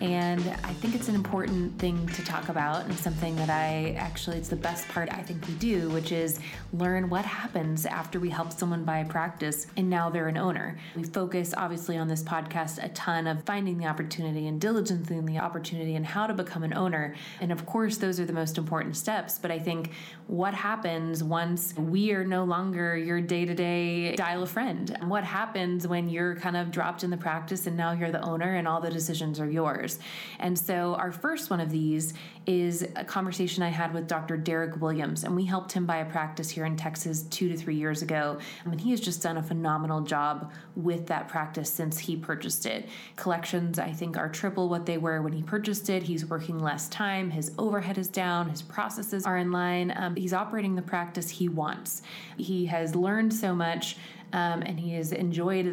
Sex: female